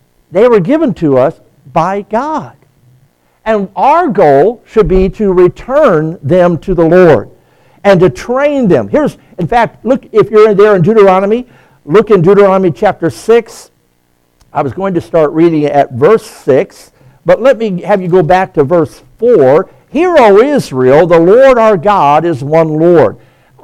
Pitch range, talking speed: 150-220 Hz, 170 wpm